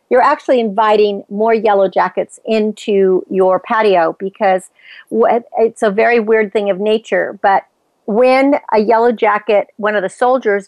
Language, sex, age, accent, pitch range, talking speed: English, female, 50-69, American, 200-240 Hz, 145 wpm